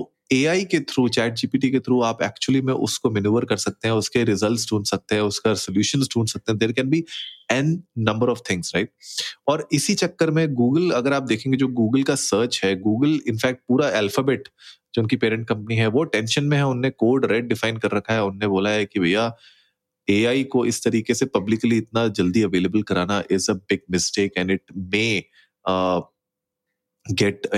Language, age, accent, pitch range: Hindi, 20-39, native, 100-135 Hz